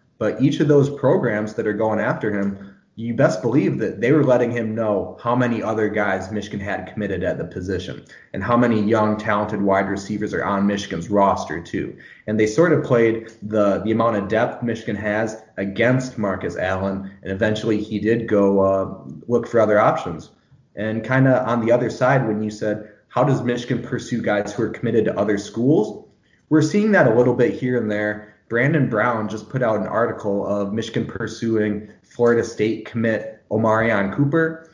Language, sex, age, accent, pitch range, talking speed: English, male, 20-39, American, 105-120 Hz, 190 wpm